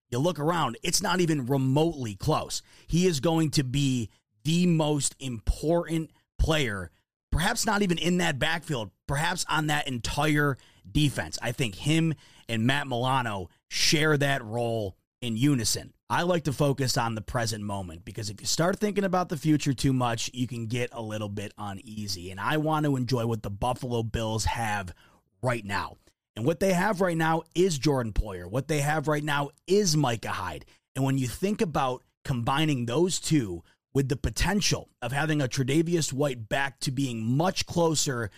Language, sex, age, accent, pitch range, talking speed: English, male, 30-49, American, 115-155 Hz, 180 wpm